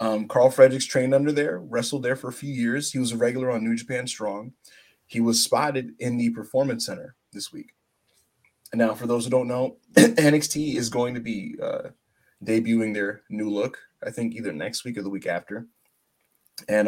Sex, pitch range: male, 115-150 Hz